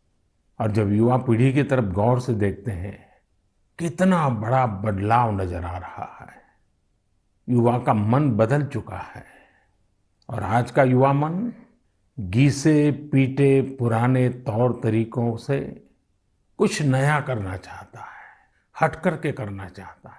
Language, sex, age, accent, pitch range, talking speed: Kannada, male, 60-79, native, 100-150 Hz, 130 wpm